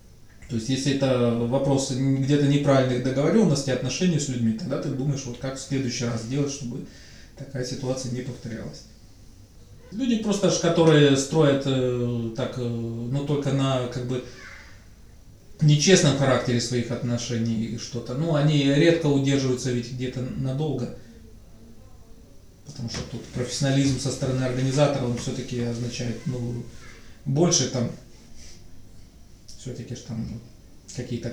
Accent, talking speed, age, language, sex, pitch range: native, 120 wpm, 20-39, Russian, male, 120-140 Hz